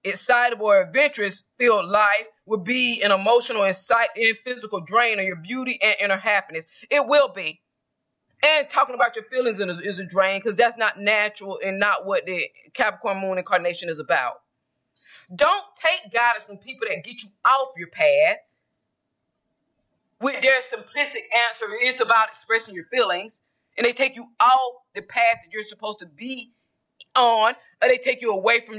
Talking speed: 170 wpm